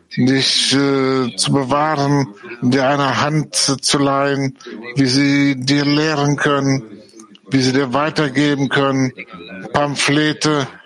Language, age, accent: English, 60-79, German